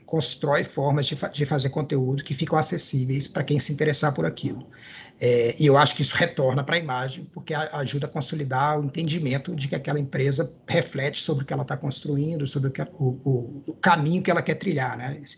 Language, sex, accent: Portuguese, male, Brazilian